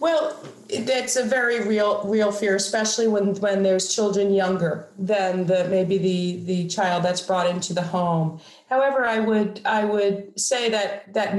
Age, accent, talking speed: 40-59, American, 170 wpm